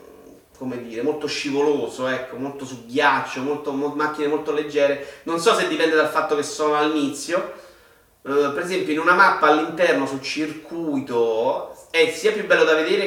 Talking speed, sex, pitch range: 170 wpm, male, 135-165 Hz